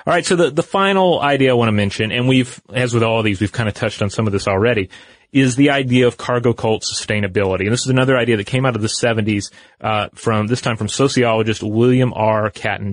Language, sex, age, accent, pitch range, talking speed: English, male, 30-49, American, 100-130 Hz, 250 wpm